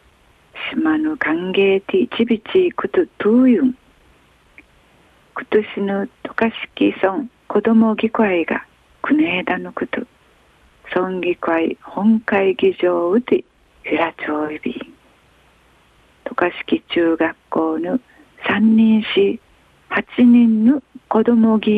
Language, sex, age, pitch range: Japanese, female, 40-59, 185-275 Hz